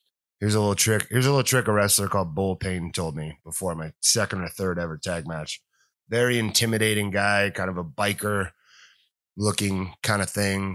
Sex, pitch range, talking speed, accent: male, 85-105 Hz, 190 wpm, American